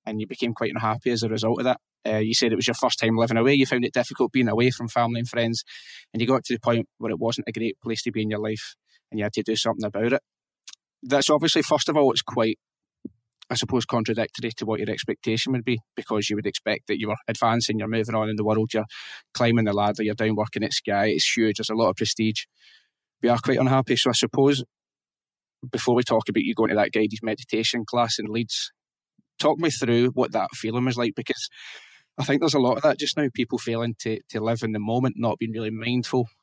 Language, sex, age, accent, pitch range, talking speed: English, male, 20-39, British, 110-125 Hz, 250 wpm